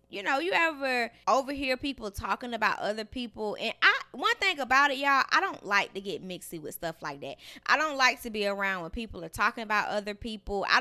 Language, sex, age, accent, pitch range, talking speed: English, female, 20-39, American, 195-260 Hz, 230 wpm